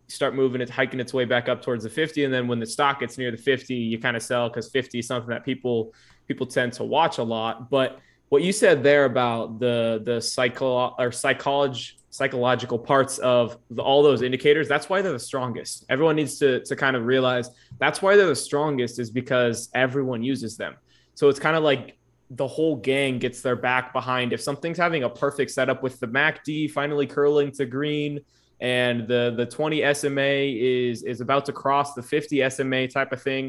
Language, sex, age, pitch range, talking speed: English, male, 20-39, 120-140 Hz, 210 wpm